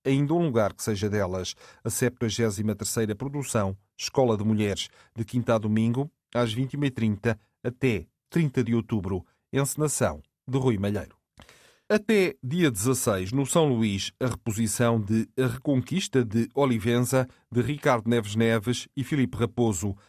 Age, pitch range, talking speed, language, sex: 40-59, 110-130 Hz, 135 wpm, Portuguese, male